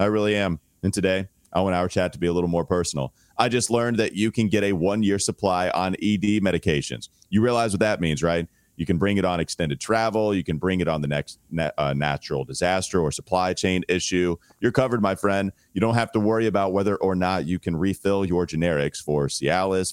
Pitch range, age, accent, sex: 80-100 Hz, 30-49, American, male